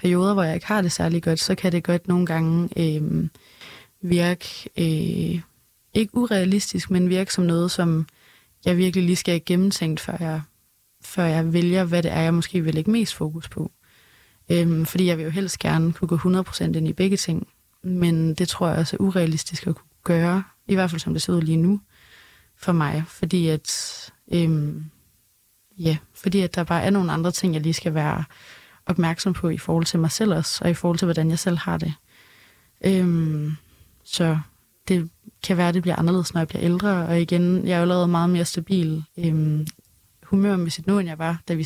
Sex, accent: female, native